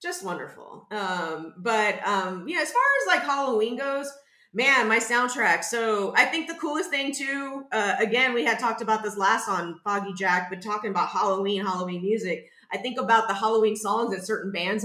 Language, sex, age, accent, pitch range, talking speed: English, female, 30-49, American, 195-280 Hz, 195 wpm